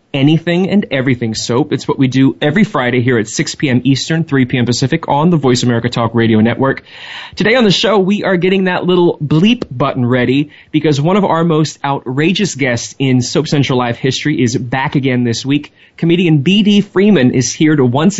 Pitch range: 130-165 Hz